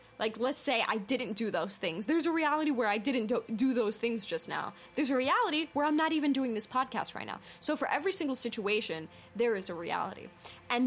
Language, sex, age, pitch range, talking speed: English, female, 10-29, 200-255 Hz, 225 wpm